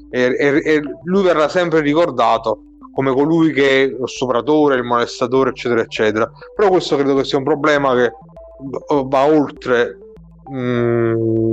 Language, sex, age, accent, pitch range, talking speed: Italian, male, 30-49, native, 120-150 Hz, 145 wpm